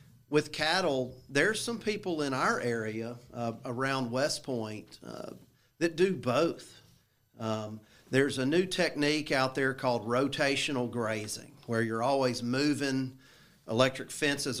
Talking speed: 130 wpm